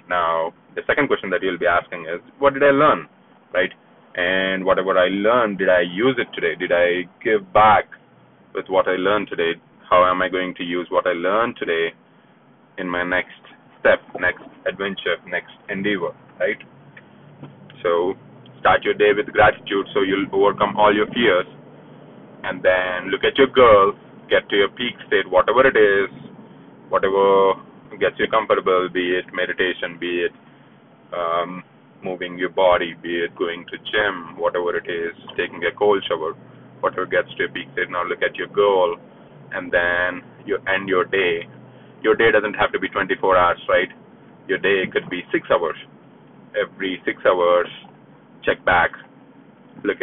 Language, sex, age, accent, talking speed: English, male, 20-39, Indian, 170 wpm